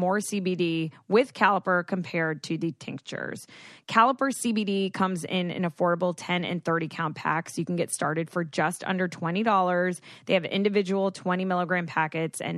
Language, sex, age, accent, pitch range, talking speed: English, female, 20-39, American, 170-210 Hz, 160 wpm